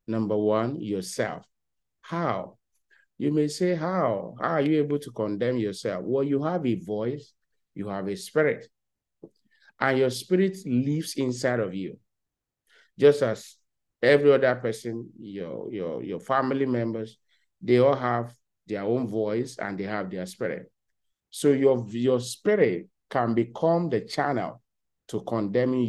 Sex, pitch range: male, 115-145 Hz